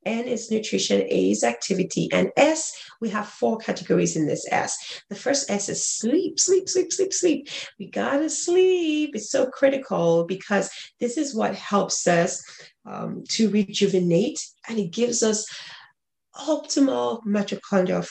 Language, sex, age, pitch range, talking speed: English, female, 30-49, 180-245 Hz, 150 wpm